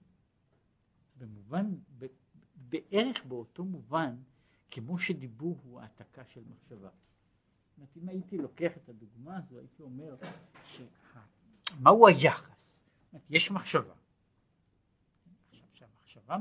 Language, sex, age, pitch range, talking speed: Hebrew, male, 60-79, 120-180 Hz, 85 wpm